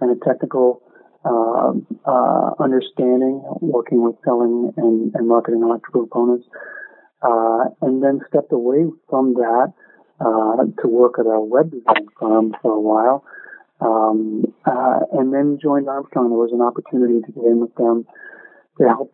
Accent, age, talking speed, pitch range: American, 40-59, 155 wpm, 120-140 Hz